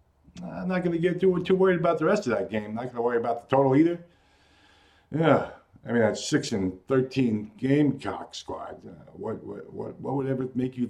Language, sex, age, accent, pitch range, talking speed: English, male, 50-69, American, 95-160 Hz, 210 wpm